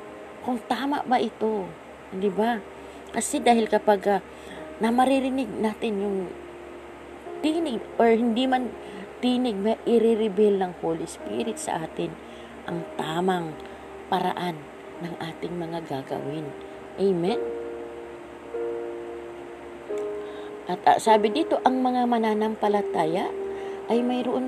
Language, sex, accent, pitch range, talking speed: Filipino, female, native, 180-230 Hz, 105 wpm